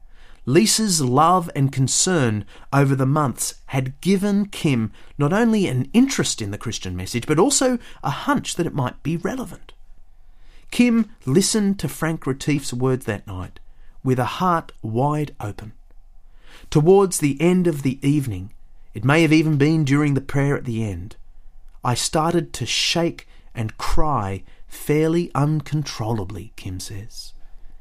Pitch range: 115-170 Hz